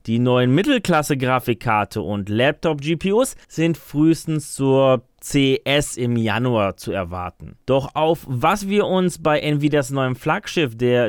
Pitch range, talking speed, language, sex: 115-170 Hz, 125 wpm, German, male